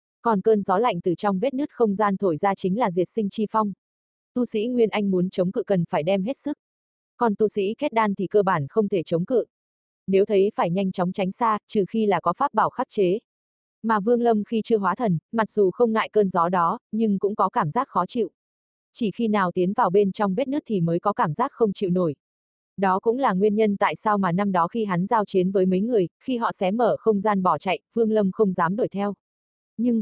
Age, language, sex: 20-39, Vietnamese, female